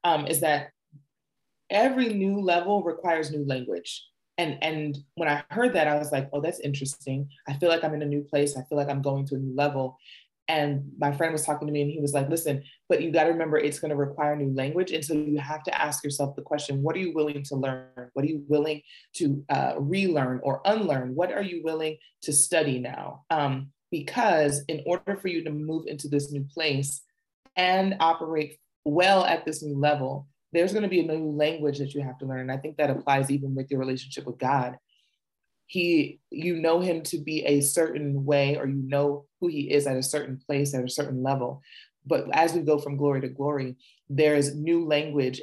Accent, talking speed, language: American, 225 wpm, English